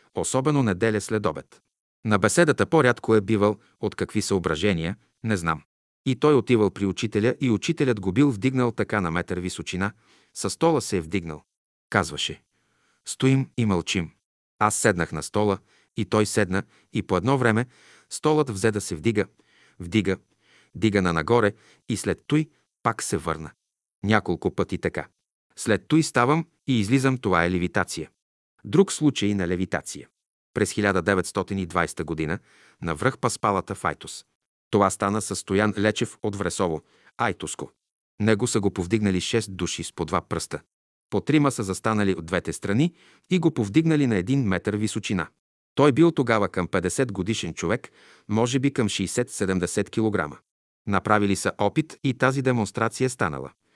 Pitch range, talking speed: 95-125 Hz, 150 wpm